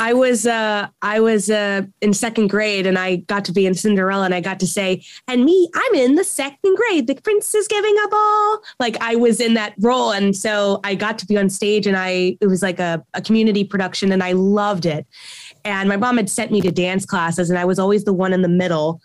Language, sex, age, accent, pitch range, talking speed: English, female, 20-39, American, 190-225 Hz, 250 wpm